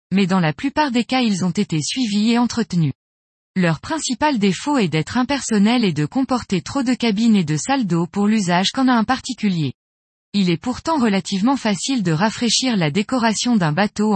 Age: 20-39